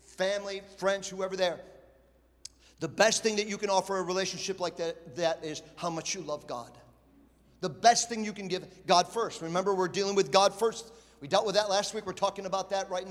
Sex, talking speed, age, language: male, 215 wpm, 50-69, English